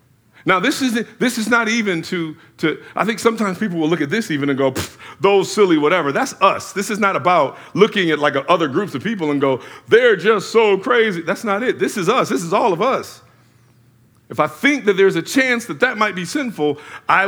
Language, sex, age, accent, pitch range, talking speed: English, male, 50-69, American, 125-210 Hz, 235 wpm